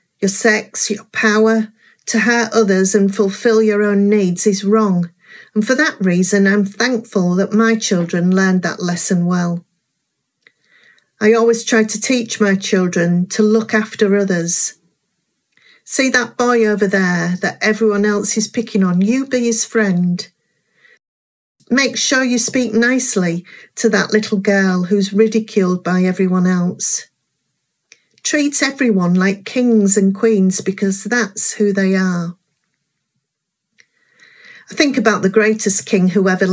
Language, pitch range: English, 190-230 Hz